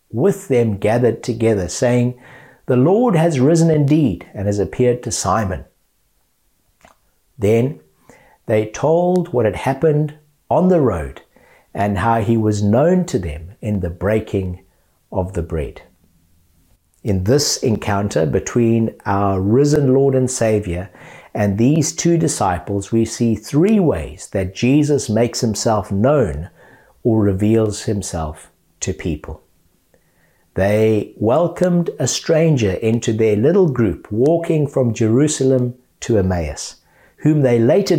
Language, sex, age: English, male, 60-79